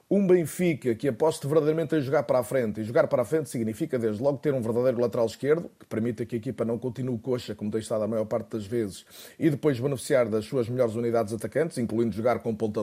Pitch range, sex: 115-135 Hz, male